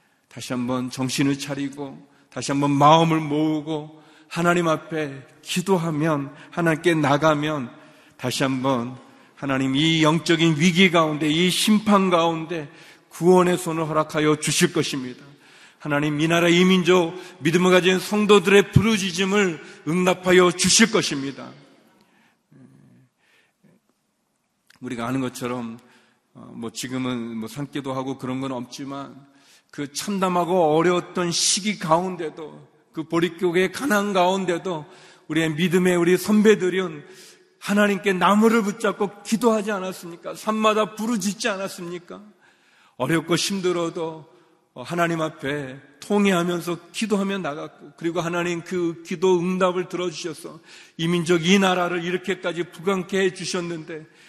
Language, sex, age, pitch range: Korean, male, 40-59, 150-185 Hz